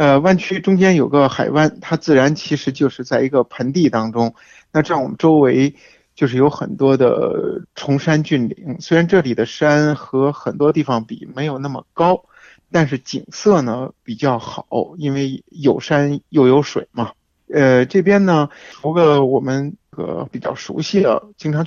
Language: Chinese